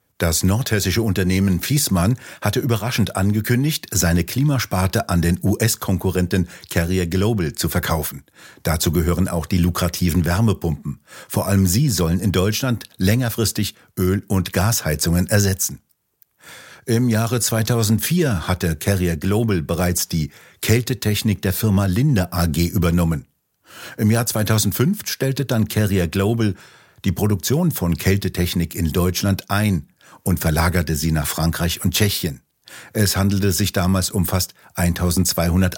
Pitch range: 90-110 Hz